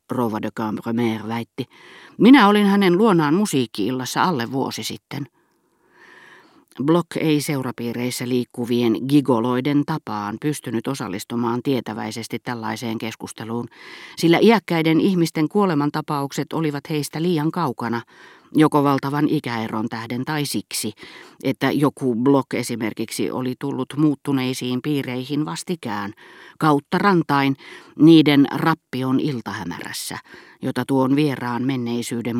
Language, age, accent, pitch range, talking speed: Finnish, 40-59, native, 120-170 Hz, 105 wpm